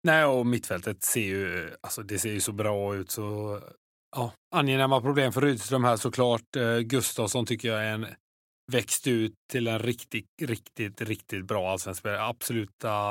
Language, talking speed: Swedish, 165 wpm